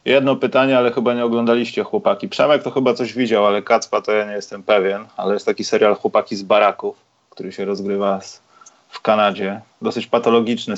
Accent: native